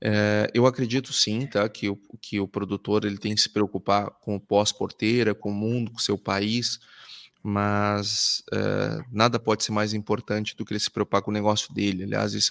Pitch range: 105-140 Hz